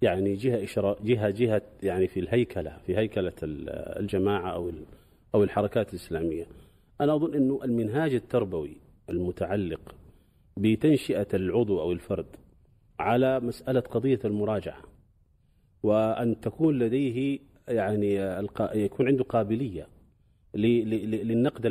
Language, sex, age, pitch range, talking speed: Arabic, male, 40-59, 100-150 Hz, 100 wpm